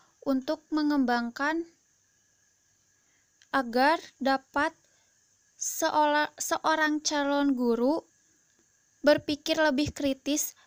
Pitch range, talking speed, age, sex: 255-290 Hz, 60 wpm, 20-39, female